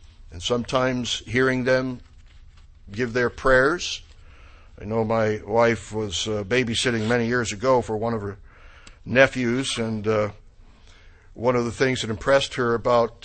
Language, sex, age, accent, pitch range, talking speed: English, male, 60-79, American, 100-130 Hz, 145 wpm